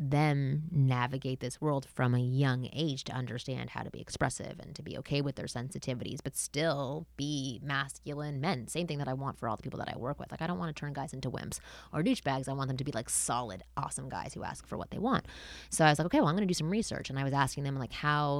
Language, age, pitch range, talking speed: English, 20-39, 135-185 Hz, 275 wpm